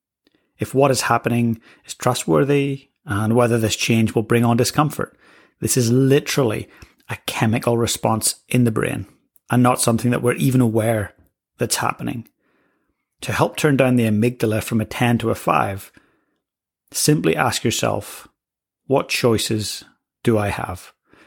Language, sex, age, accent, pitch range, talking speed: English, male, 30-49, British, 110-125 Hz, 145 wpm